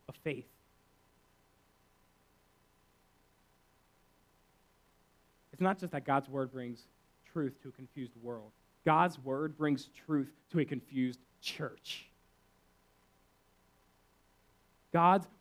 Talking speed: 85 wpm